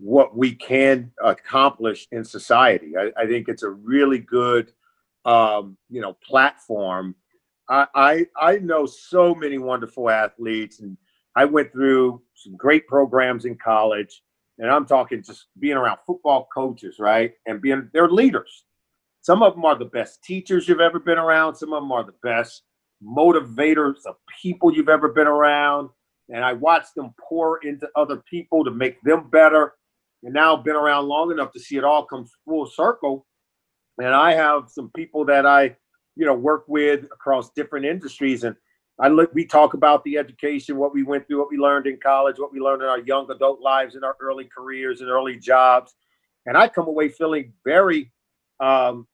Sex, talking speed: male, 185 wpm